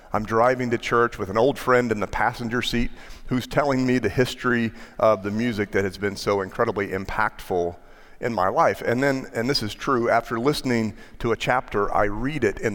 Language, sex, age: English, male, 40-59